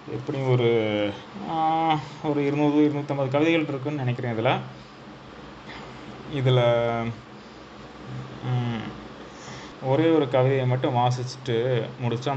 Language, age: Tamil, 20-39